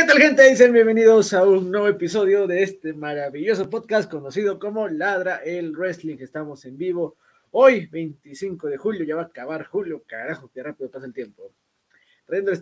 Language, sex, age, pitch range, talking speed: Spanish, male, 30-49, 135-180 Hz, 175 wpm